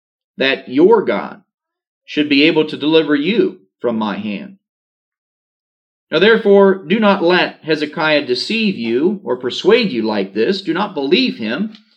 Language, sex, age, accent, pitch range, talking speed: English, male, 40-59, American, 140-195 Hz, 145 wpm